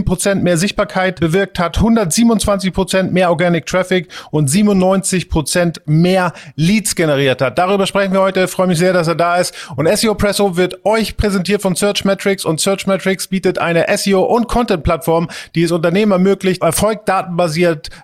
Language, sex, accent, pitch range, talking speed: German, male, German, 165-195 Hz, 165 wpm